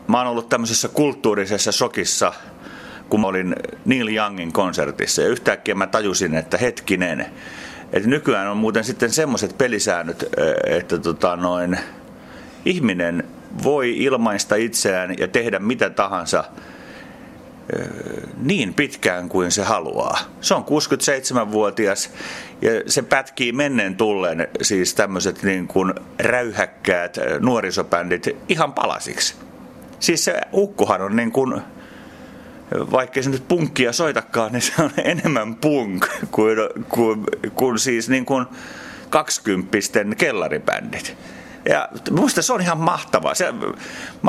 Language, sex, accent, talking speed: Finnish, male, native, 120 wpm